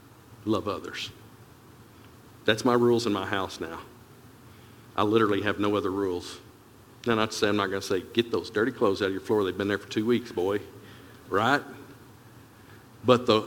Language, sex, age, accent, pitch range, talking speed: English, male, 50-69, American, 105-125 Hz, 185 wpm